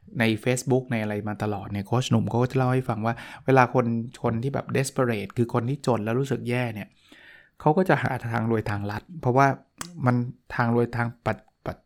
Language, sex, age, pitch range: Thai, male, 20-39, 115-135 Hz